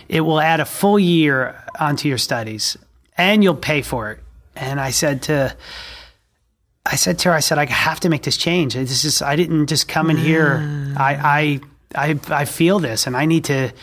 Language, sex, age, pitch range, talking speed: English, male, 30-49, 145-185 Hz, 210 wpm